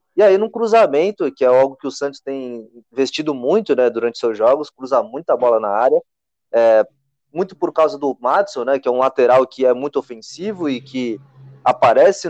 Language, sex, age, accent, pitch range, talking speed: Portuguese, male, 20-39, Brazilian, 125-195 Hz, 195 wpm